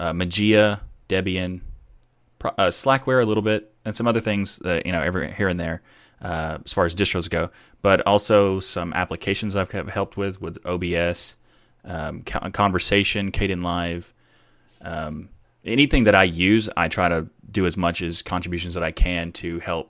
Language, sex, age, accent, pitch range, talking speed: English, male, 20-39, American, 85-95 Hz, 170 wpm